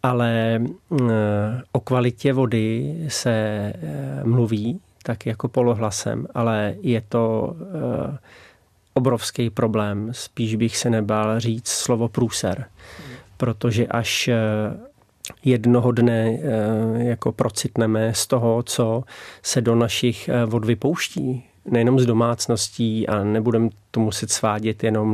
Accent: native